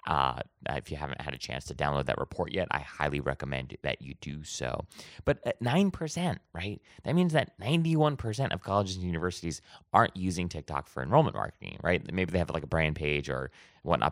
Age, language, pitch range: 30-49, English, 75-105 Hz